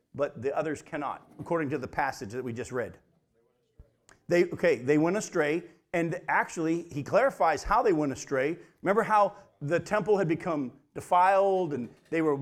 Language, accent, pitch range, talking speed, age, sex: English, American, 140-175 Hz, 170 wpm, 50-69, male